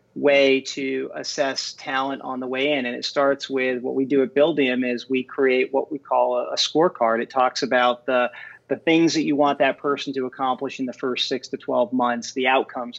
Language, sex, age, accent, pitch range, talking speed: English, male, 40-59, American, 125-145 Hz, 220 wpm